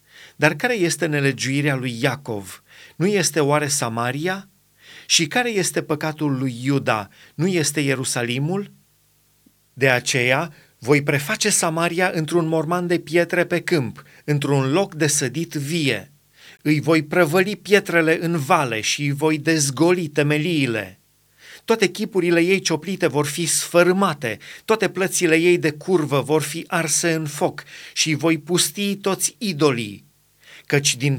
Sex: male